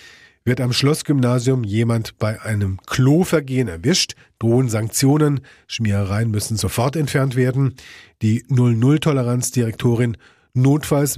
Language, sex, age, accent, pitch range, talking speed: German, male, 40-59, German, 110-140 Hz, 105 wpm